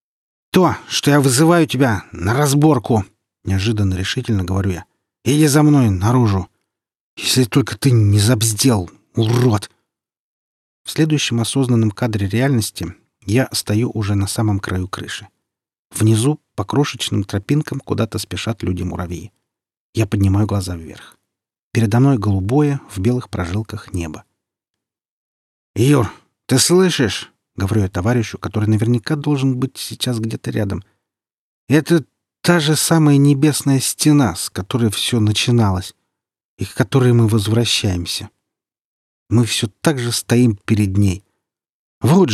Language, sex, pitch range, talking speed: Russian, male, 100-130 Hz, 125 wpm